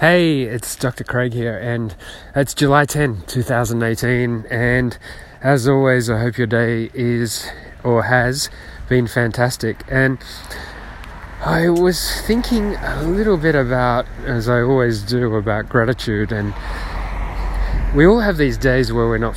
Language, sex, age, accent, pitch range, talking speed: English, male, 20-39, Australian, 110-135 Hz, 140 wpm